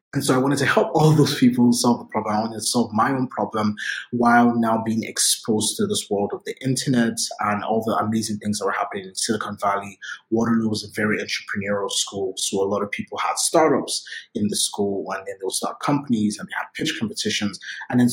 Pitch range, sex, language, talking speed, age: 105-125 Hz, male, English, 230 wpm, 20-39